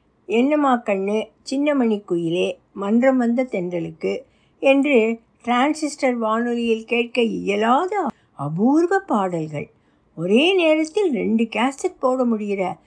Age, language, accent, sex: 60-79, Tamil, native, female